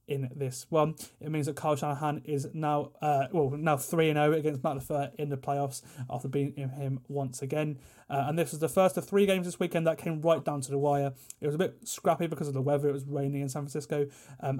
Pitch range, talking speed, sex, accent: 135-155 Hz, 255 wpm, male, British